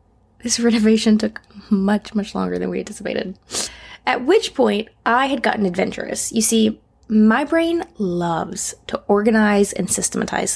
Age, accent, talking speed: 20-39, American, 140 wpm